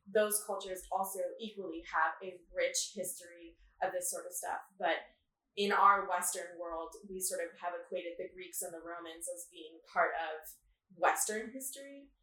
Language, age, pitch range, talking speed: English, 20-39, 180-225 Hz, 165 wpm